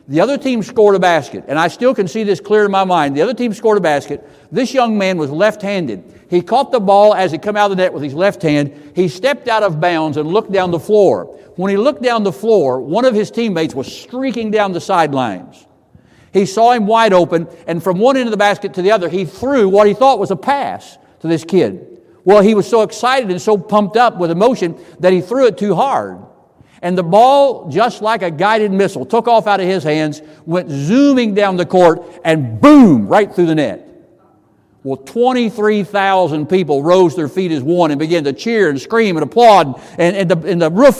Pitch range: 155-220 Hz